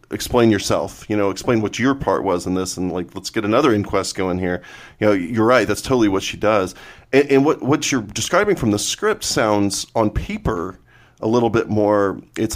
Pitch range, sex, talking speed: 95-110 Hz, male, 215 wpm